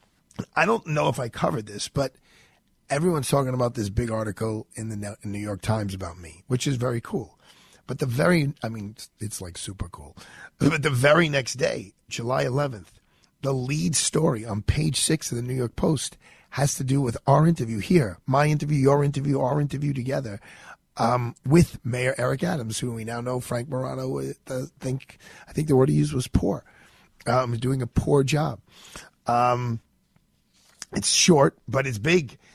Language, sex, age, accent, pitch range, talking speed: English, male, 40-59, American, 110-140 Hz, 180 wpm